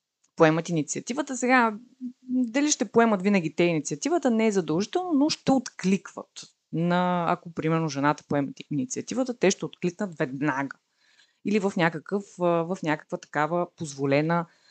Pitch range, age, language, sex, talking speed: 150-205 Hz, 30-49, Bulgarian, female, 130 wpm